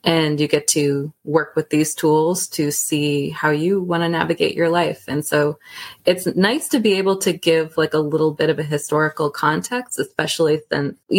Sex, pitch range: female, 155-190 Hz